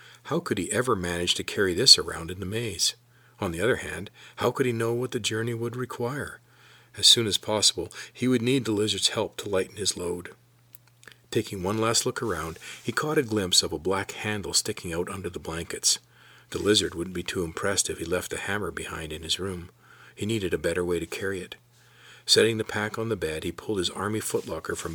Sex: male